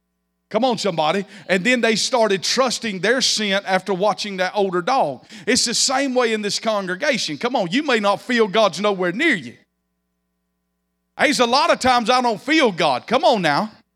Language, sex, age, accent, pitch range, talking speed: English, male, 40-59, American, 185-240 Hz, 185 wpm